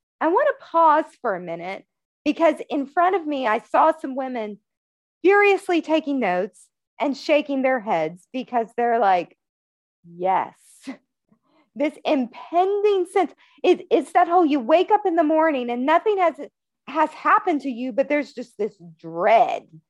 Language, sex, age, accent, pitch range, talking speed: English, female, 40-59, American, 235-335 Hz, 155 wpm